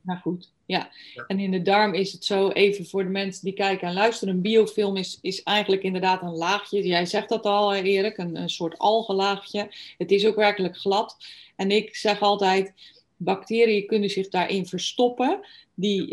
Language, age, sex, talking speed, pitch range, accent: Dutch, 20-39, female, 185 wpm, 180-215 Hz, Dutch